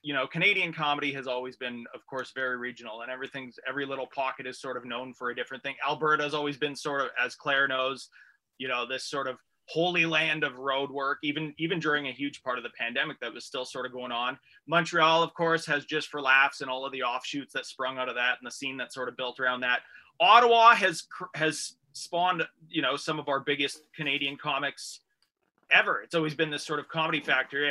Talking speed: 230 wpm